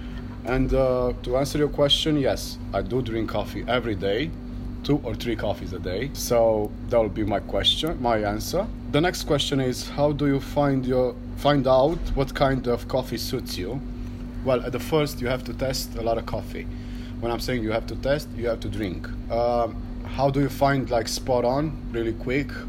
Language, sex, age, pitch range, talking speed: English, male, 30-49, 110-120 Hz, 205 wpm